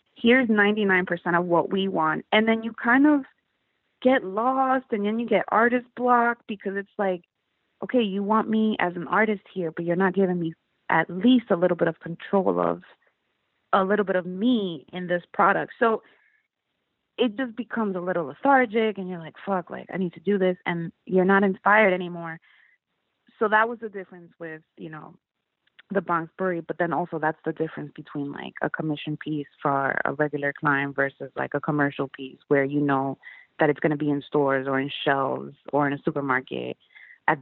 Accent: American